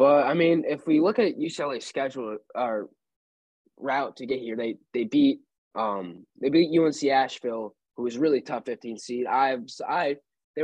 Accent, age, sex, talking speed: American, 20-39, male, 180 wpm